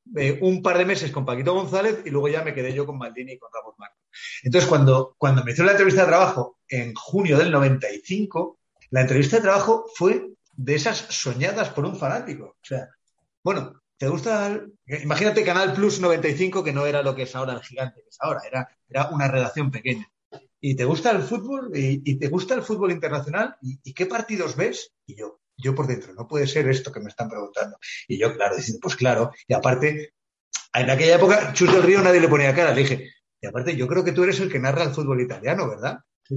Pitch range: 130-185 Hz